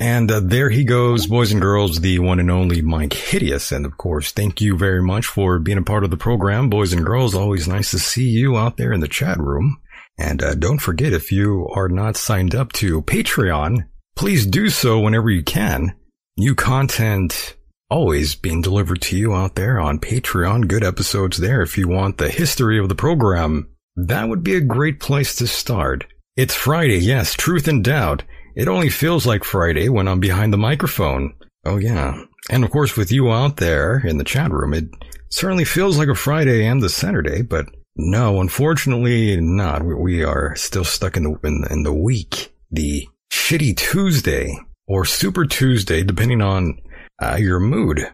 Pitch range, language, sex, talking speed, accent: 90-125 Hz, English, male, 190 wpm, American